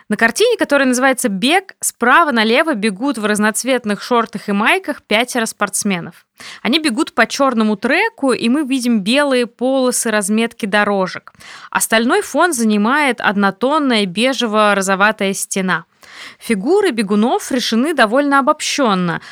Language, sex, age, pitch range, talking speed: Russian, female, 20-39, 215-275 Hz, 120 wpm